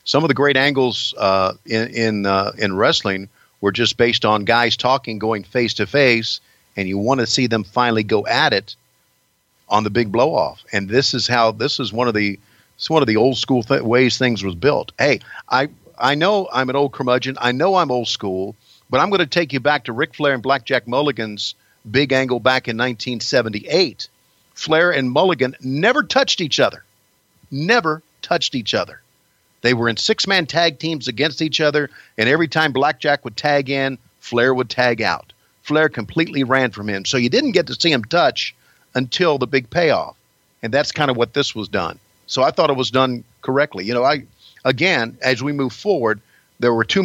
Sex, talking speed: male, 205 wpm